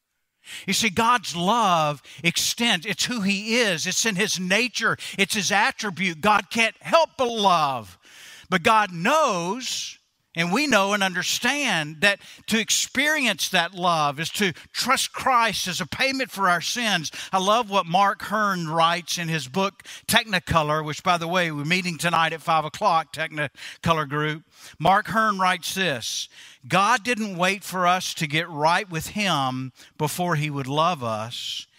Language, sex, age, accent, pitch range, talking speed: English, male, 50-69, American, 150-200 Hz, 160 wpm